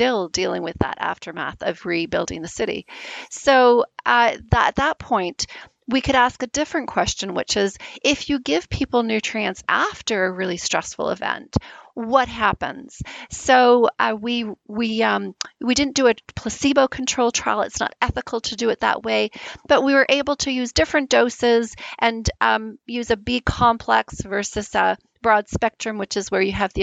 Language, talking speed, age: English, 165 wpm, 40-59